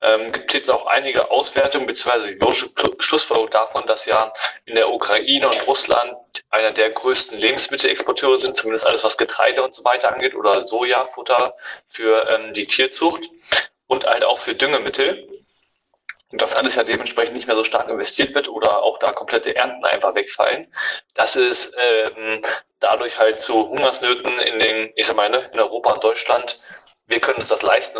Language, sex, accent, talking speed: German, male, German, 175 wpm